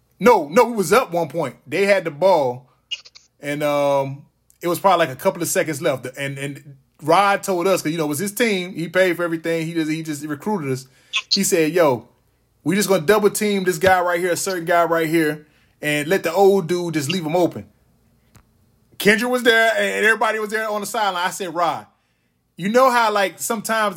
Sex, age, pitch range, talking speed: male, 20-39, 155-205 Hz, 225 wpm